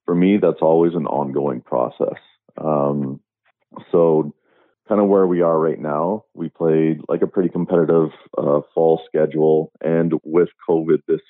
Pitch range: 75-85 Hz